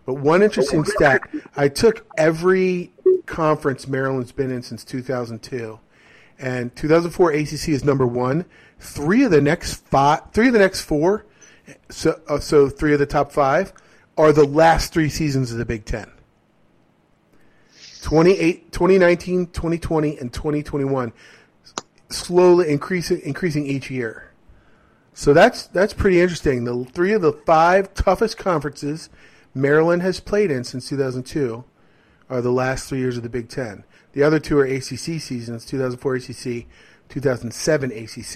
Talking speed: 140 wpm